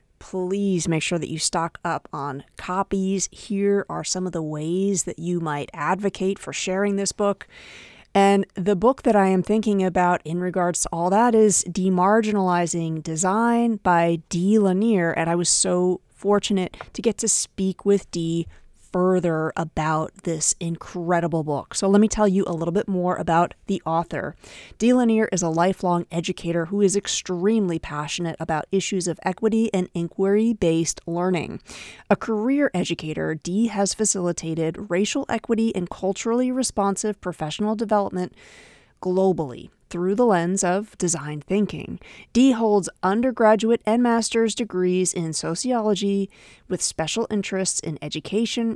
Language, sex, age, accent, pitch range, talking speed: English, female, 30-49, American, 170-210 Hz, 150 wpm